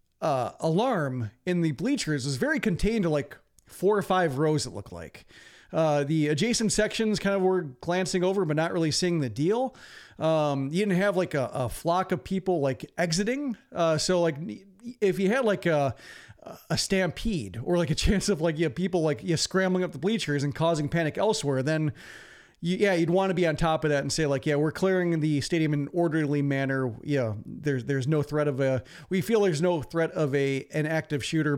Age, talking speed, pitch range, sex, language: 40-59, 215 wpm, 145-185 Hz, male, English